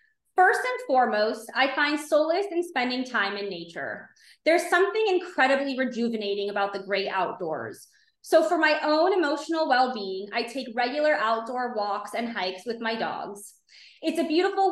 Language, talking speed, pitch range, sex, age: English, 155 wpm, 220-310 Hz, female, 20-39